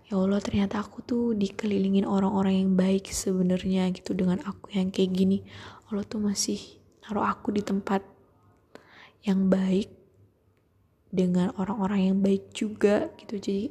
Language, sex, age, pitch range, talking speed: Indonesian, female, 20-39, 185-205 Hz, 140 wpm